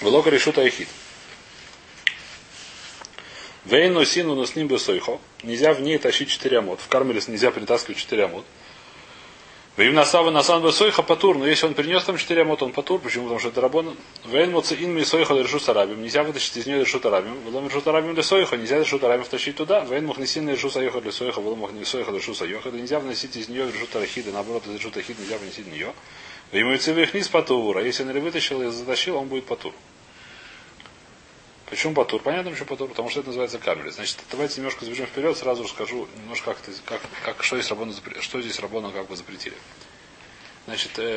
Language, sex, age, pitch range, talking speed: Russian, male, 30-49, 120-160 Hz, 170 wpm